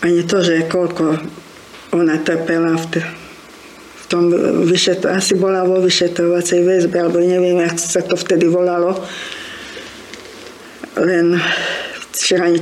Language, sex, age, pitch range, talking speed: Slovak, female, 50-69, 165-185 Hz, 120 wpm